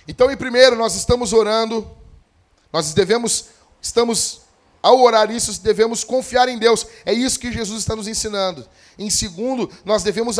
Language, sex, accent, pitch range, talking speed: Portuguese, male, Brazilian, 165-245 Hz, 155 wpm